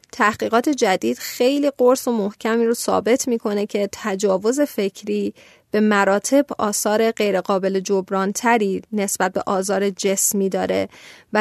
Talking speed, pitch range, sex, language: 125 wpm, 200-250 Hz, female, Persian